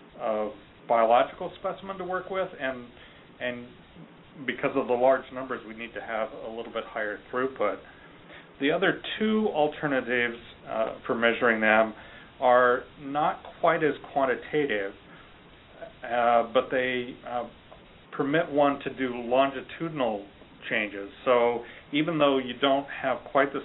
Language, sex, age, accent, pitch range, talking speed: English, male, 40-59, American, 115-145 Hz, 135 wpm